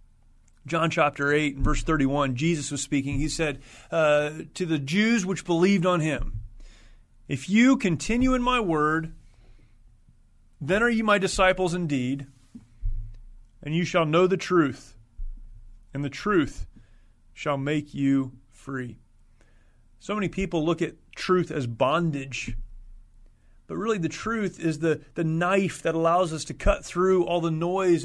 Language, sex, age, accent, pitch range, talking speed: English, male, 30-49, American, 115-170 Hz, 150 wpm